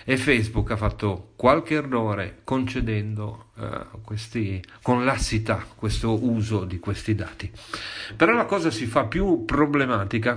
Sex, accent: male, native